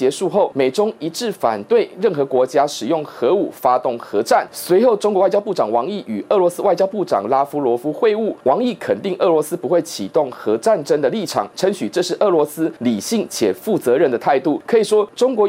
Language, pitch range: Chinese, 155-225 Hz